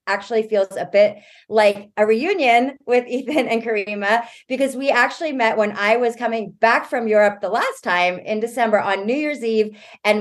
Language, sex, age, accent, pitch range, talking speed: English, female, 30-49, American, 185-225 Hz, 190 wpm